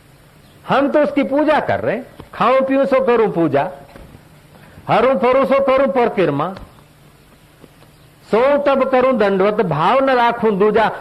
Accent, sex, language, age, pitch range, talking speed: native, male, Hindi, 50-69, 140-210 Hz, 125 wpm